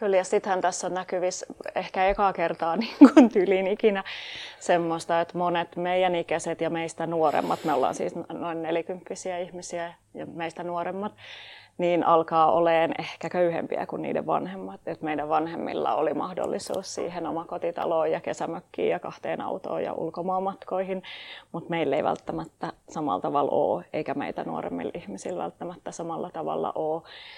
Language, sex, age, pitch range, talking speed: Finnish, female, 30-49, 165-190 Hz, 150 wpm